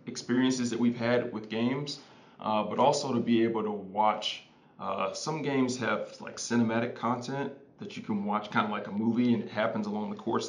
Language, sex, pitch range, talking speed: English, male, 110-125 Hz, 205 wpm